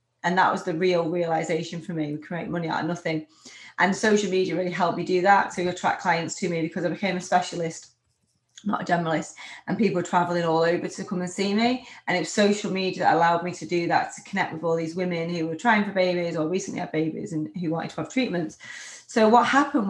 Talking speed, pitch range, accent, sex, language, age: 245 wpm, 165-205 Hz, British, female, English, 30-49